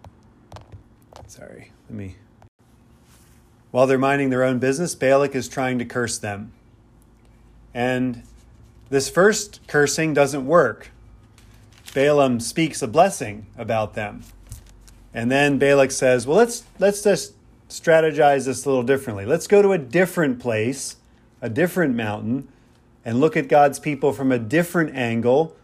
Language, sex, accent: English, male, American